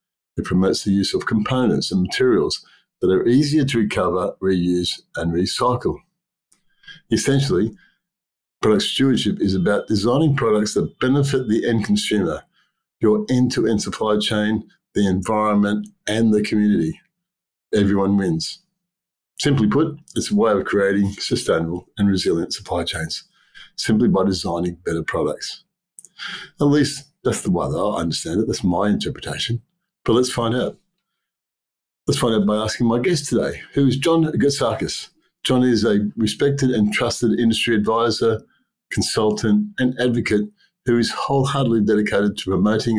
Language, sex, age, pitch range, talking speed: English, male, 50-69, 105-140 Hz, 140 wpm